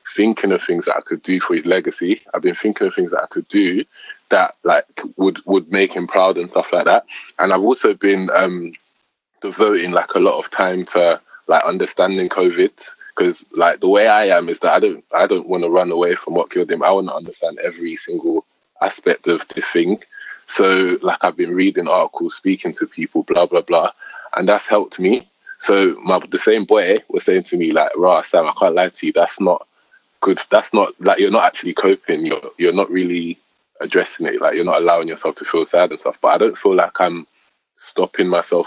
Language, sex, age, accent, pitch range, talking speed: English, male, 20-39, British, 310-410 Hz, 220 wpm